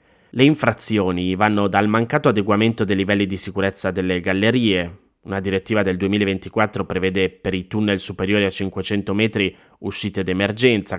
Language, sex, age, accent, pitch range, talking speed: Italian, male, 20-39, native, 95-115 Hz, 140 wpm